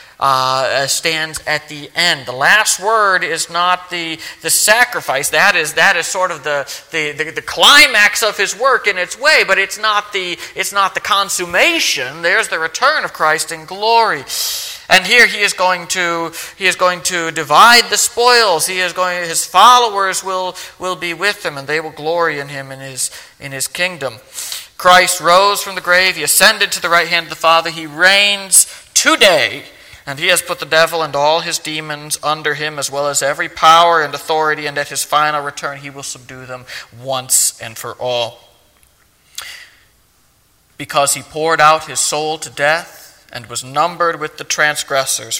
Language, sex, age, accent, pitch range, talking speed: English, male, 40-59, American, 140-180 Hz, 190 wpm